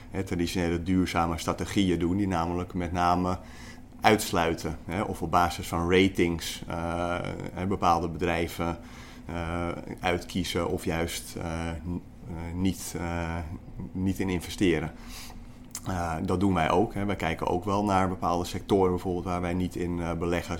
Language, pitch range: Dutch, 85-95 Hz